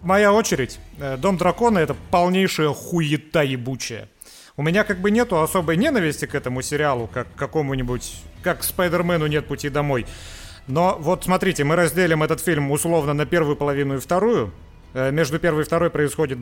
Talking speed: 155 wpm